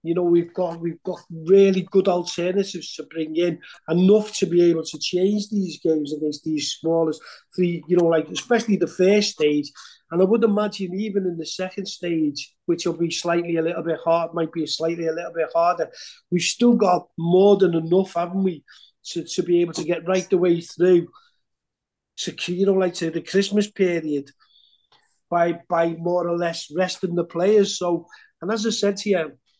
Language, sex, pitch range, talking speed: English, male, 165-200 Hz, 195 wpm